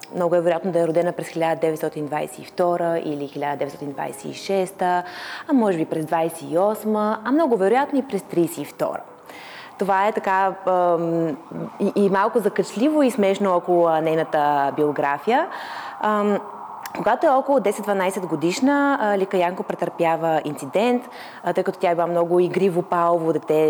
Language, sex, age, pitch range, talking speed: Bulgarian, female, 20-39, 165-205 Hz, 125 wpm